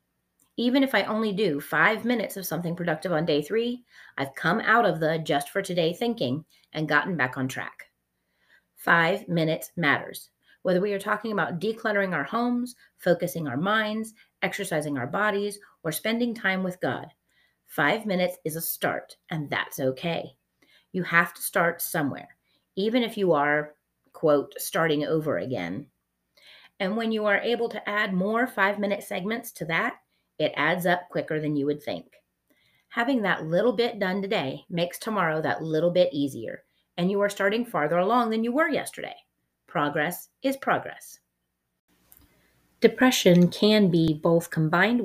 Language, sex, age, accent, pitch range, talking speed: English, female, 30-49, American, 155-205 Hz, 155 wpm